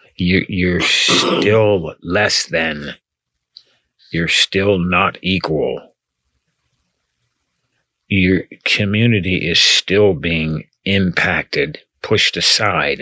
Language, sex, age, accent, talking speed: English, male, 50-69, American, 80 wpm